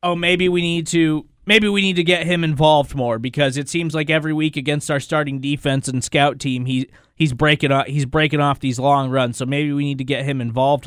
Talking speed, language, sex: 245 wpm, English, male